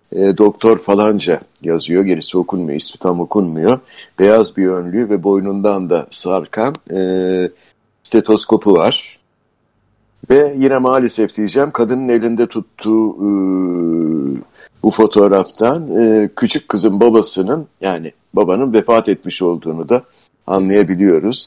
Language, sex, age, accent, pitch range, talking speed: Turkish, male, 60-79, native, 100-130 Hz, 110 wpm